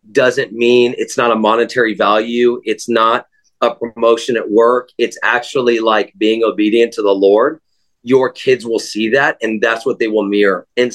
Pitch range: 115-140 Hz